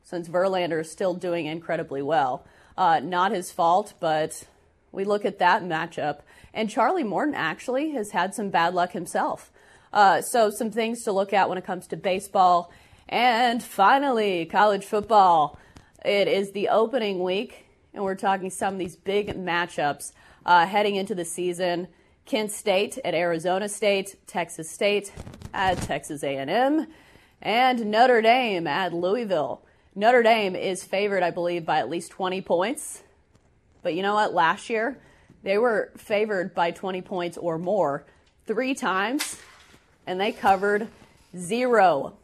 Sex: female